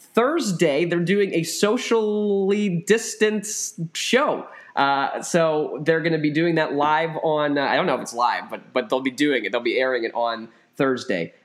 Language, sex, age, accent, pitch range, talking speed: English, male, 20-39, American, 120-155 Hz, 190 wpm